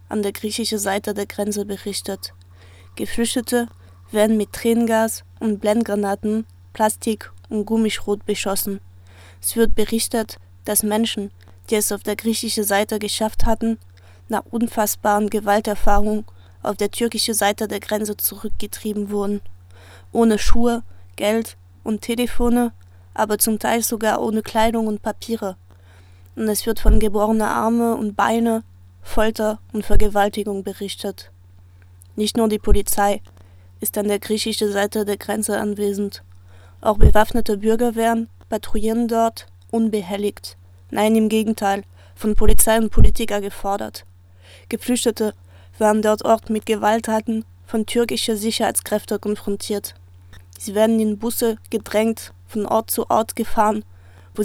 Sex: female